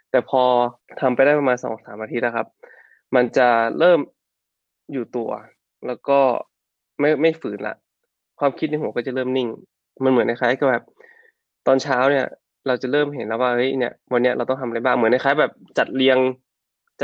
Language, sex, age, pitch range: Thai, male, 20-39, 115-140 Hz